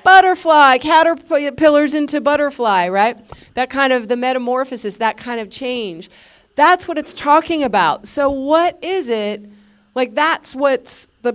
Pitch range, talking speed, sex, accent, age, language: 205-275 Hz, 145 wpm, female, American, 40-59, English